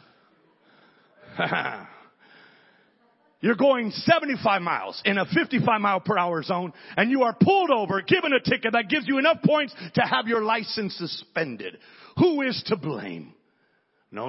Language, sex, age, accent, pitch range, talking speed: English, male, 40-59, American, 155-250 Hz, 145 wpm